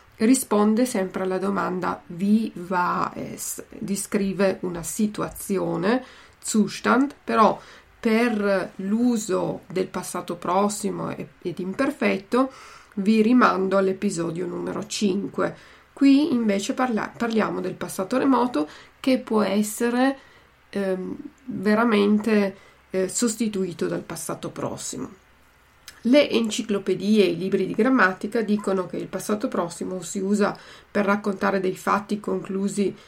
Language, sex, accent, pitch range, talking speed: Italian, female, native, 185-225 Hz, 105 wpm